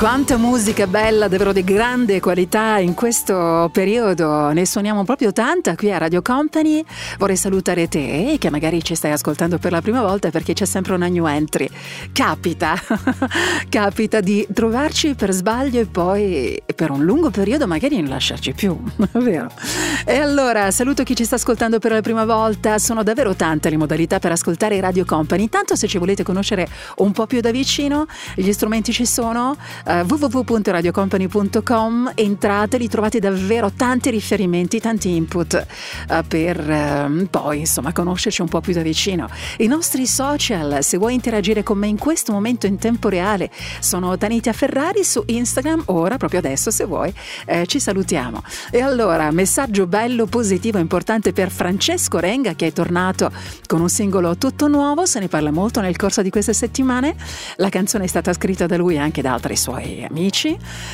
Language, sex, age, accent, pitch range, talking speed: Italian, female, 40-59, native, 180-240 Hz, 170 wpm